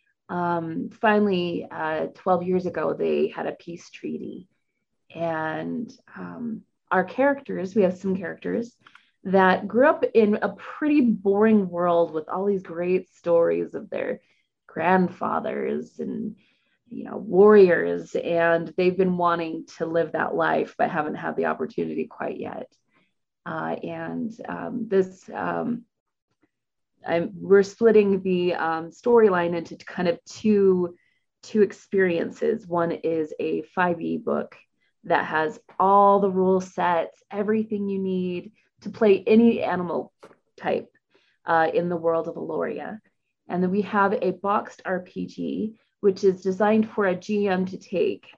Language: English